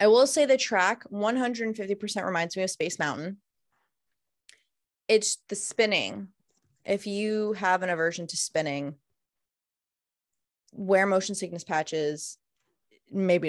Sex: female